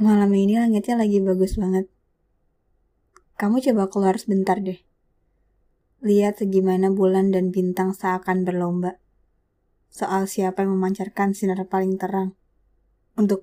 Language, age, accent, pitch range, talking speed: Indonesian, 20-39, native, 175-210 Hz, 115 wpm